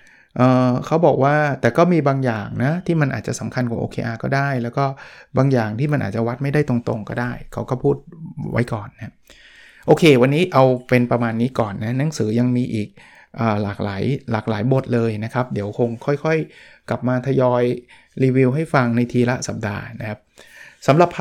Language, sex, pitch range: Thai, male, 110-135 Hz